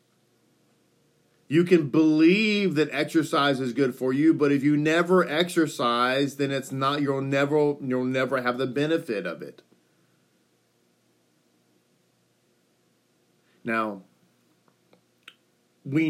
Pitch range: 130-175 Hz